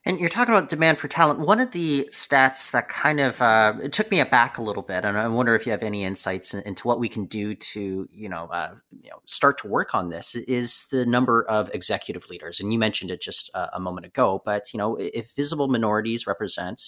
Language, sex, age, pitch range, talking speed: English, male, 30-49, 105-145 Hz, 245 wpm